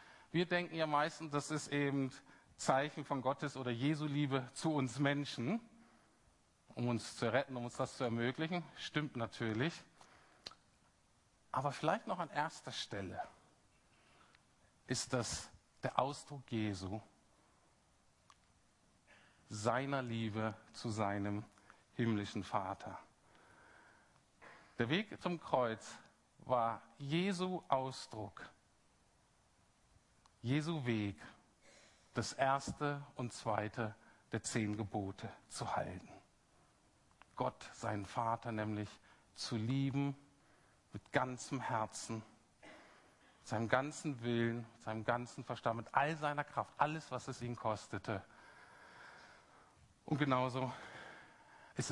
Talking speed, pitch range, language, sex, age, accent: 105 wpm, 110-140 Hz, German, male, 50-69, German